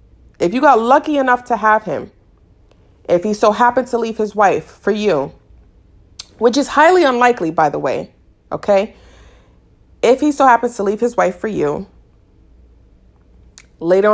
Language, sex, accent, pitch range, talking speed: English, female, American, 170-220 Hz, 155 wpm